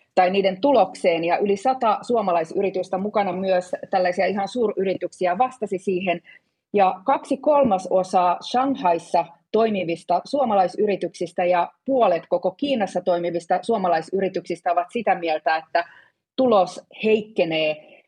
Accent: native